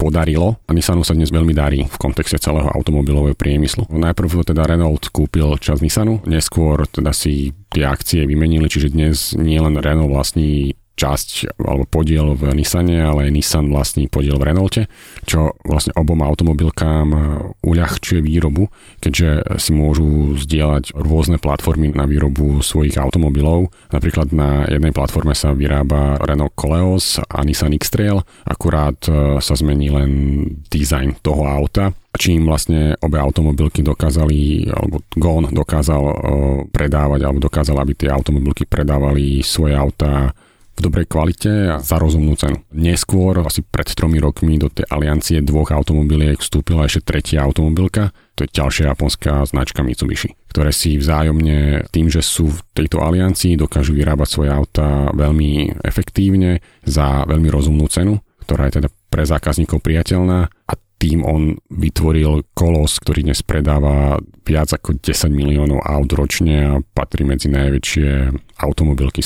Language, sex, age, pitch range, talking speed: Slovak, male, 40-59, 75-85 Hz, 140 wpm